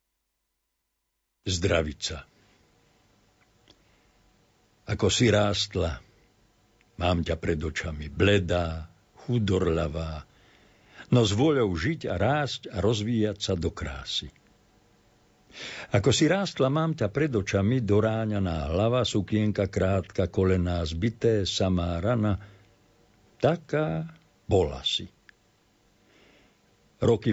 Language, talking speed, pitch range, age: Slovak, 90 wpm, 90-110 Hz, 60-79